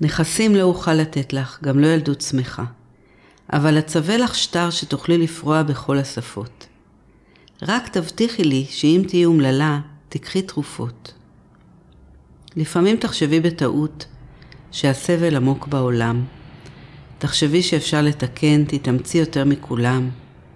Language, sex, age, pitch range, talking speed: Hebrew, female, 50-69, 135-165 Hz, 110 wpm